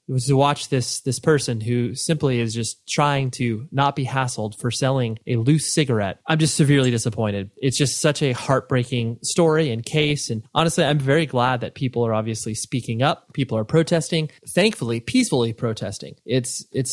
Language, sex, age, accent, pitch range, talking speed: English, male, 20-39, American, 115-135 Hz, 185 wpm